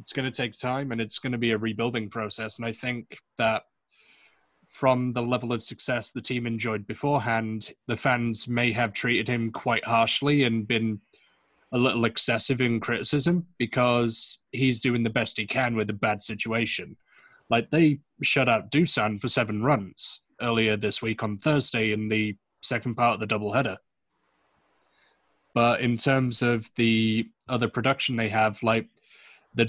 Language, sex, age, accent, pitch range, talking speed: English, male, 20-39, British, 110-130 Hz, 170 wpm